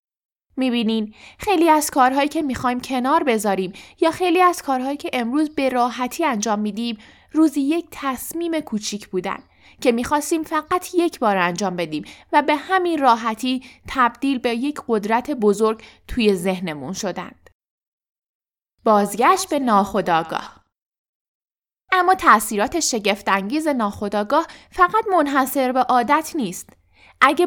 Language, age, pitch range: Persian, 10-29, 215-295 Hz